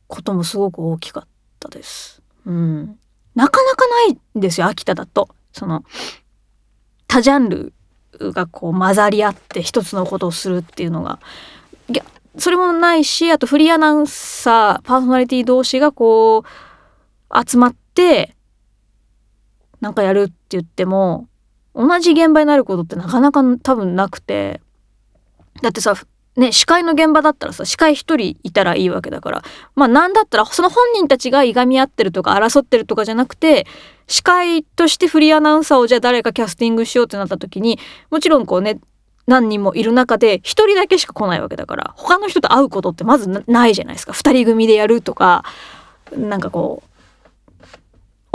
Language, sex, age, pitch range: Japanese, female, 20-39, 205-300 Hz